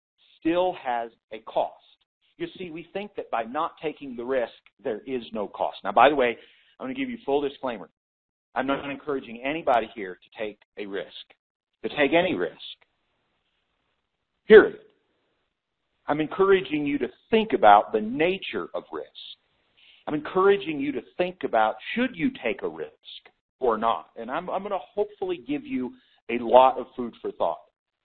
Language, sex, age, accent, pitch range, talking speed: English, male, 50-69, American, 120-200 Hz, 170 wpm